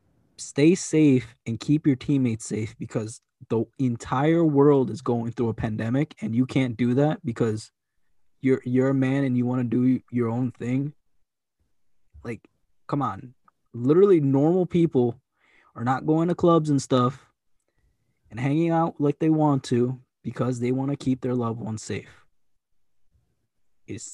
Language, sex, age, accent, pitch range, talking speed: English, male, 20-39, American, 120-145 Hz, 160 wpm